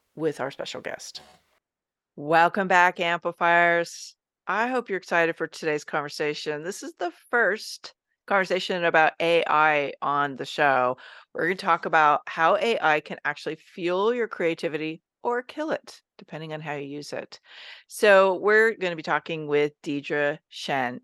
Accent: American